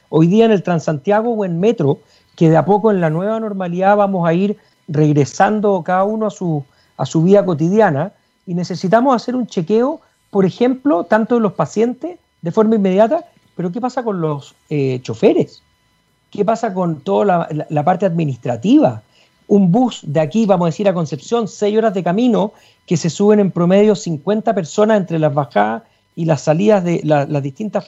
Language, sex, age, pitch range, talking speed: Spanish, male, 40-59, 170-220 Hz, 190 wpm